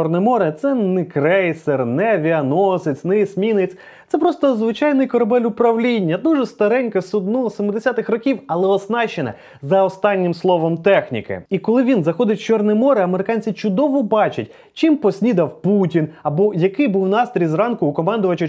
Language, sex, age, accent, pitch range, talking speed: Ukrainian, male, 20-39, native, 165-225 Hz, 140 wpm